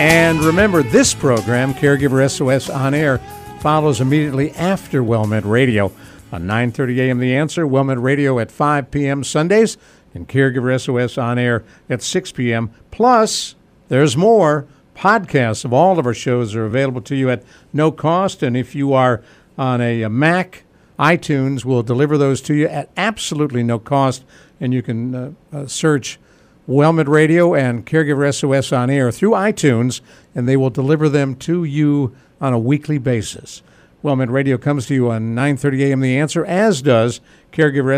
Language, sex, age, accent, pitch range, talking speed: English, male, 60-79, American, 125-155 Hz, 165 wpm